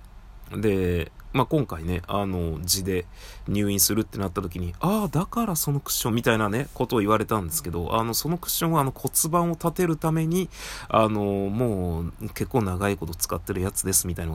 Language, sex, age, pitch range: Japanese, male, 20-39, 90-120 Hz